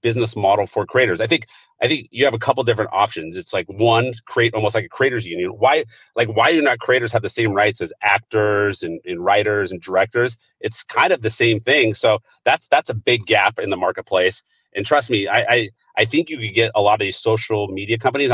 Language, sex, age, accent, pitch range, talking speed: English, male, 30-49, American, 105-125 Hz, 235 wpm